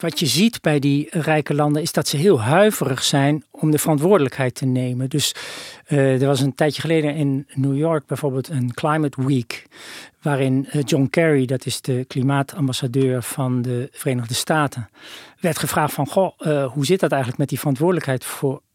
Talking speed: 180 wpm